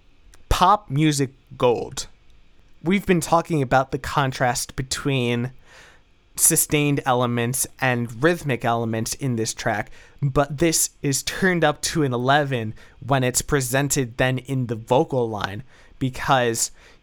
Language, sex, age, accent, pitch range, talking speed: English, male, 20-39, American, 125-155 Hz, 125 wpm